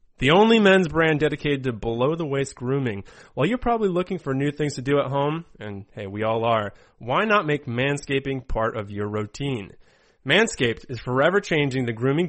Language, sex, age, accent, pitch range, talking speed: English, male, 30-49, American, 120-170 Hz, 185 wpm